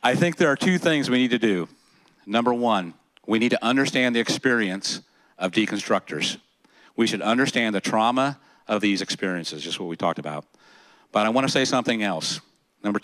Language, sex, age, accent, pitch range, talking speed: English, male, 50-69, American, 95-120 Hz, 190 wpm